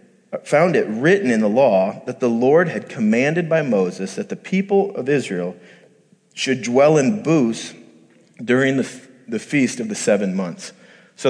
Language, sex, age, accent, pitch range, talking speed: English, male, 40-59, American, 110-160 Hz, 160 wpm